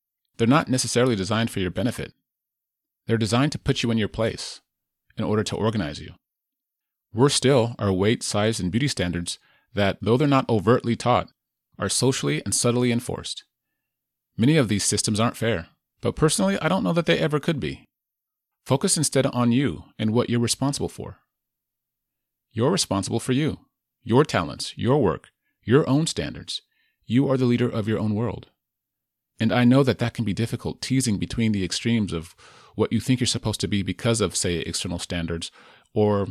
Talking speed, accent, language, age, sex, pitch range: 180 wpm, American, English, 30-49, male, 100-130 Hz